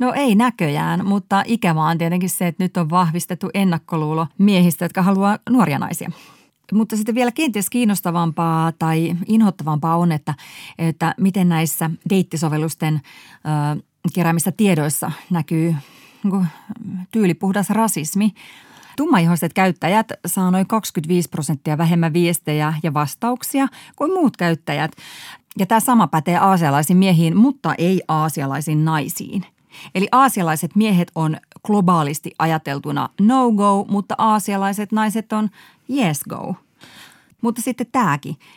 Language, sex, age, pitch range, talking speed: Finnish, female, 30-49, 160-210 Hz, 120 wpm